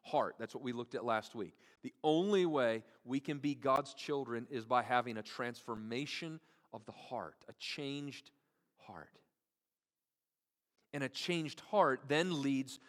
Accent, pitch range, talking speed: American, 120-150 Hz, 155 wpm